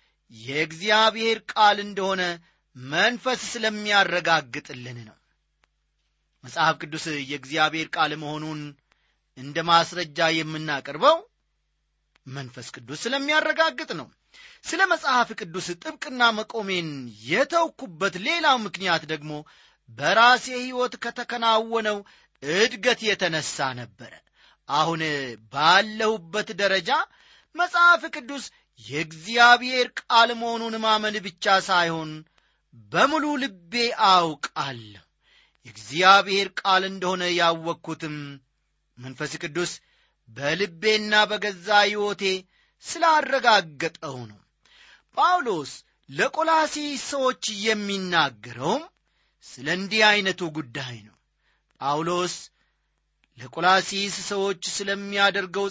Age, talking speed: 30-49, 75 wpm